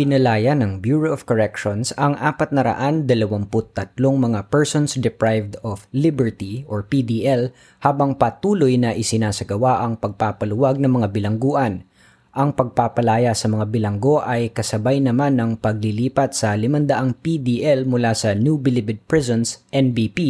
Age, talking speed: 20-39, 135 wpm